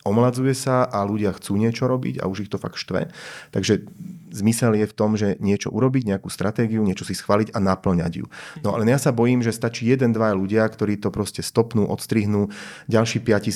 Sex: male